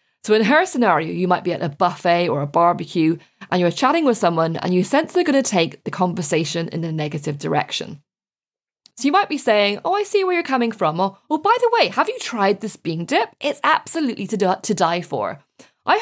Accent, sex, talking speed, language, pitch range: British, female, 225 wpm, English, 165-245 Hz